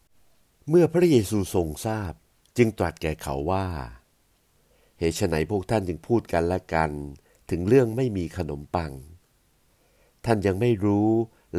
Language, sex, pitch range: Thai, male, 80-105 Hz